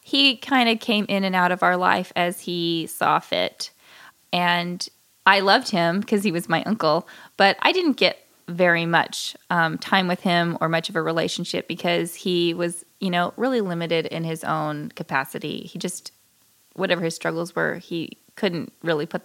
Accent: American